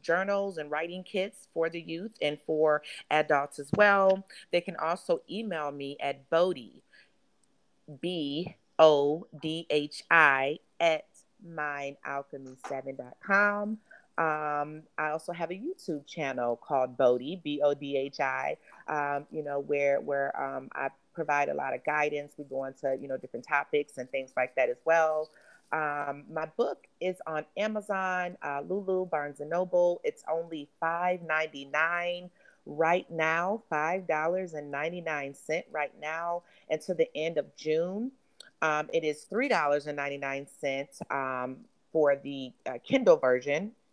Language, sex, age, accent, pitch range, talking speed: English, female, 30-49, American, 145-180 Hz, 125 wpm